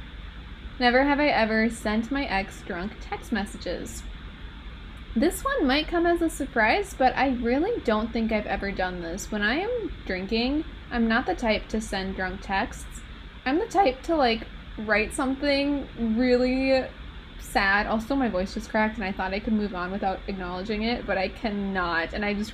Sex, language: female, English